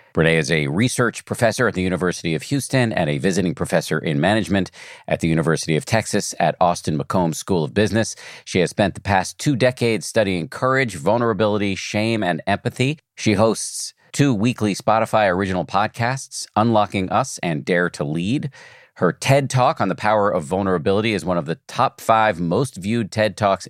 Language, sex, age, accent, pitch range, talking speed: English, male, 50-69, American, 90-115 Hz, 180 wpm